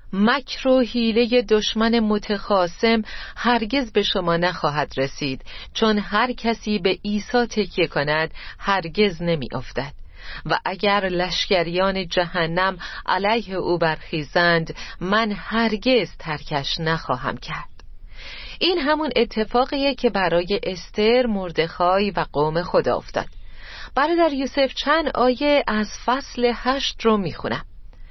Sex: female